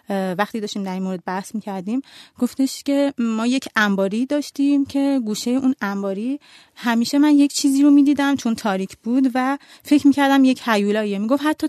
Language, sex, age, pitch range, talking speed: Persian, female, 30-49, 210-280 Hz, 160 wpm